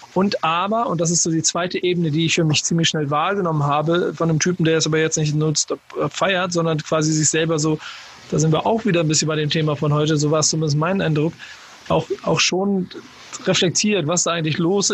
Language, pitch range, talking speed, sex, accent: German, 150-170 Hz, 235 wpm, male, German